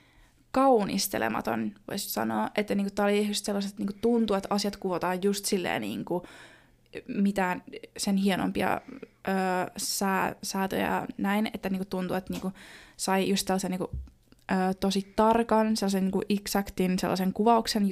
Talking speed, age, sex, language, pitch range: 125 wpm, 20-39, female, Finnish, 185-210 Hz